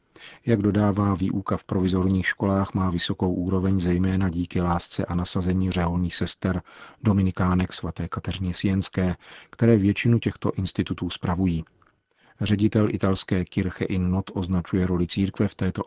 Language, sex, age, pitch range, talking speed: Czech, male, 40-59, 90-100 Hz, 130 wpm